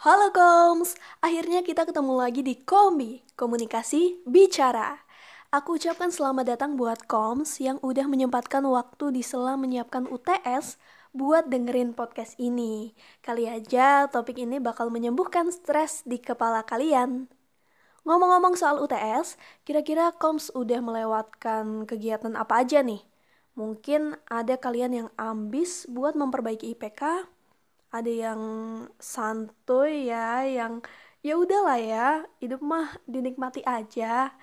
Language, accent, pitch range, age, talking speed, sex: Indonesian, native, 235-315 Hz, 20-39, 120 wpm, female